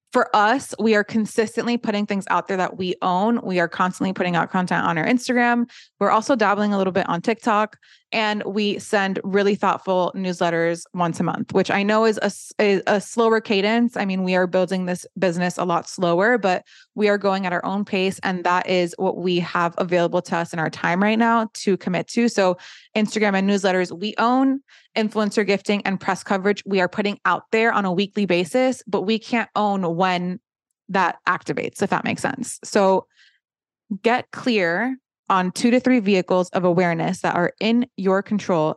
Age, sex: 20-39, female